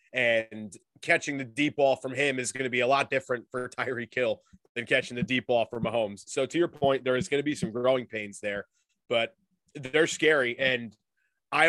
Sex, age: male, 30-49